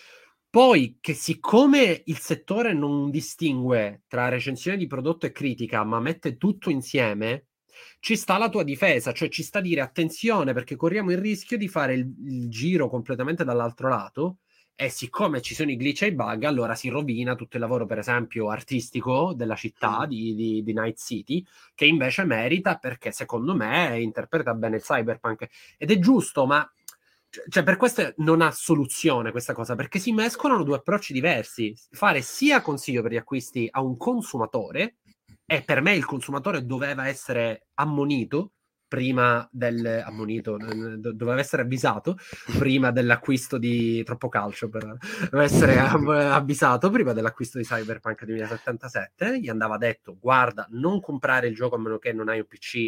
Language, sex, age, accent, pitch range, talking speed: Italian, male, 30-49, native, 120-170 Hz, 165 wpm